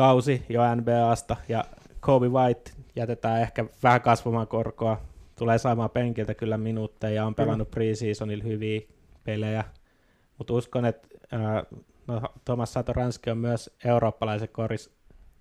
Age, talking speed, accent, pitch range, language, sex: 20-39, 130 wpm, native, 105-115 Hz, Finnish, male